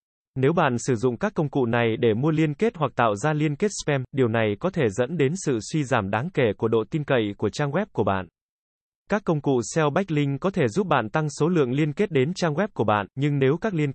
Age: 20-39